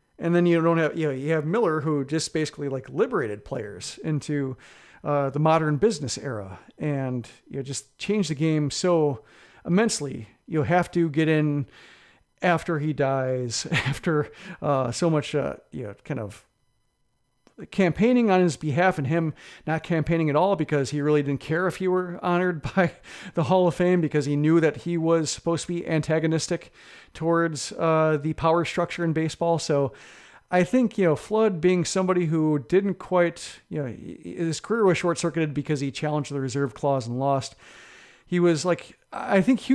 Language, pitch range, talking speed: English, 145-180 Hz, 185 wpm